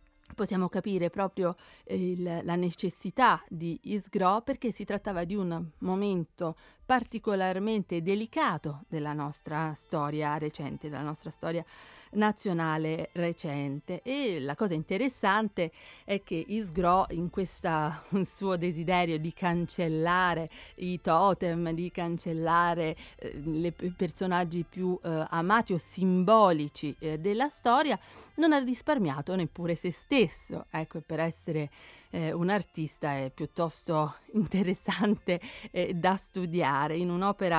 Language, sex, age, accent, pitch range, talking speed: Italian, female, 40-59, native, 160-200 Hz, 115 wpm